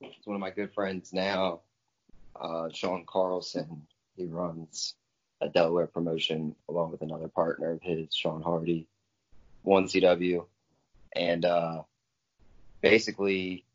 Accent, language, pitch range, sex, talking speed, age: American, English, 85-100 Hz, male, 120 wpm, 20-39